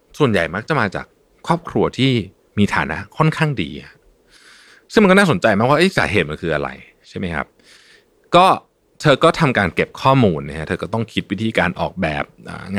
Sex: male